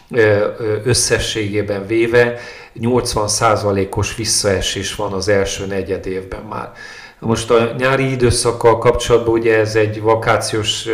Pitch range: 105-115 Hz